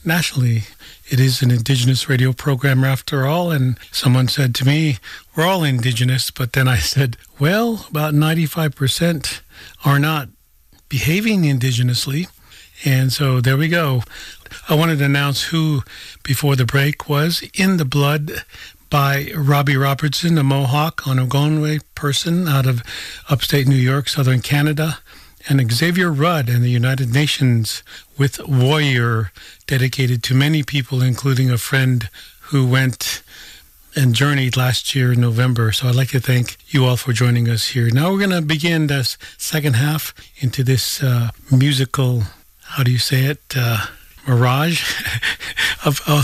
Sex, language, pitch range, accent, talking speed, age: male, English, 125-145 Hz, American, 150 wpm, 50-69